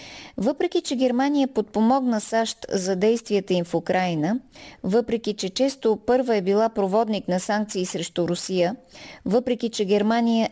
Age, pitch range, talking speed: 20-39, 190-235 Hz, 135 wpm